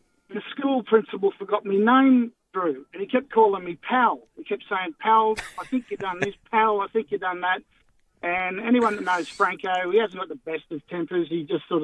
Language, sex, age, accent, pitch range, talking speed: English, male, 50-69, Australian, 185-245 Hz, 220 wpm